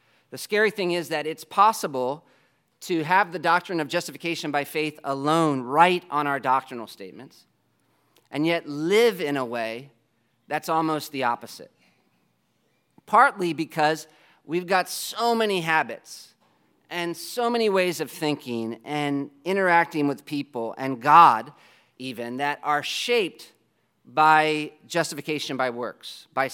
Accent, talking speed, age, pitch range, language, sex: American, 135 wpm, 40-59, 135-170 Hz, English, male